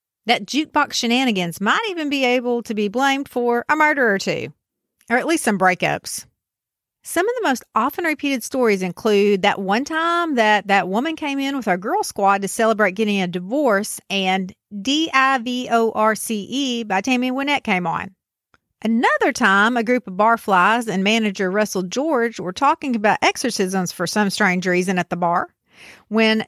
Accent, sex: American, female